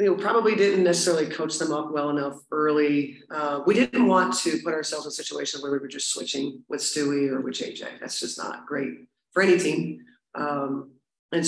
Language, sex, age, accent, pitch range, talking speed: English, female, 40-59, American, 145-165 Hz, 205 wpm